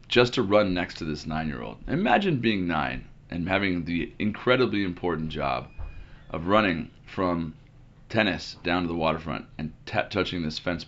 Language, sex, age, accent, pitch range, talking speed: English, male, 30-49, American, 85-135 Hz, 165 wpm